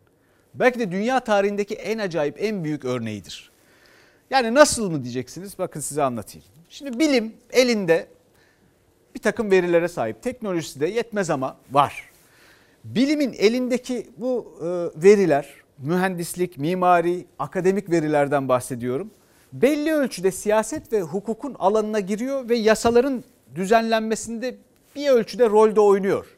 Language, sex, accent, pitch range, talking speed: Turkish, male, native, 155-235 Hz, 115 wpm